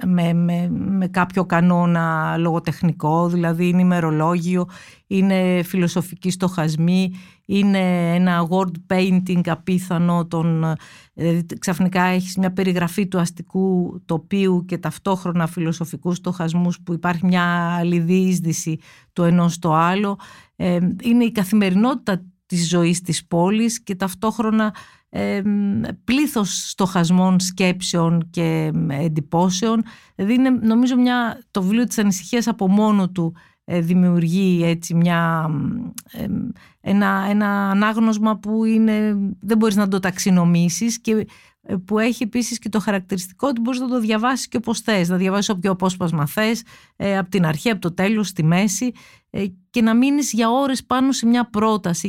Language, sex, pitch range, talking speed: Greek, female, 175-215 Hz, 135 wpm